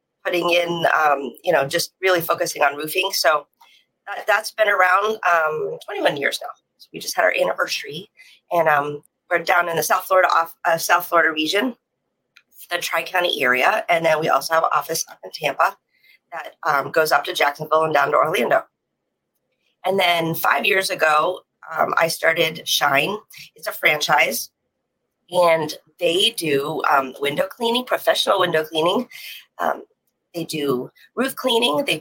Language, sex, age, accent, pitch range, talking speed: English, female, 40-59, American, 160-210 Hz, 165 wpm